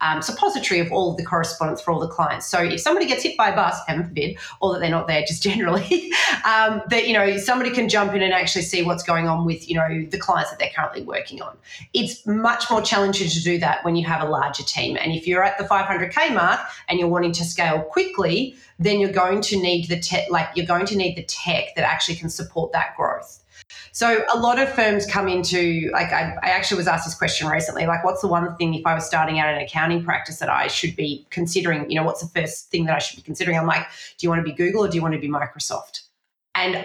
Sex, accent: female, Australian